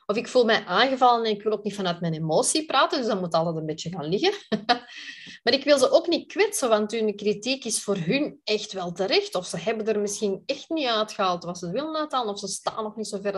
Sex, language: female, Dutch